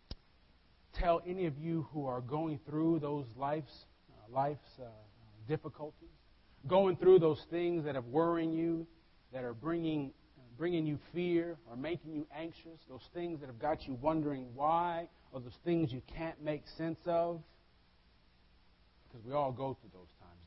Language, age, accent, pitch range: English, 40-59, American, 100-165 Hz